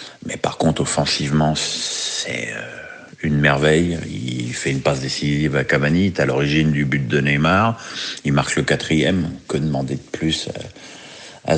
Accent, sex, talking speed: French, male, 155 wpm